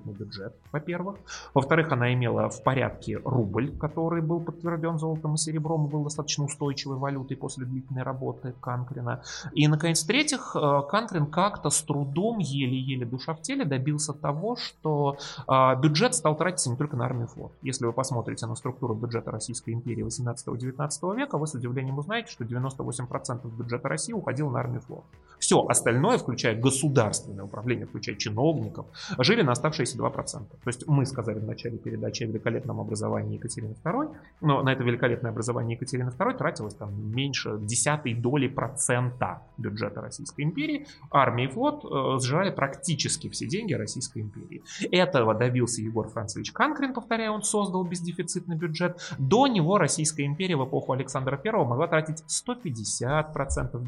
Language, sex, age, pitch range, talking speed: Russian, male, 30-49, 120-160 Hz, 150 wpm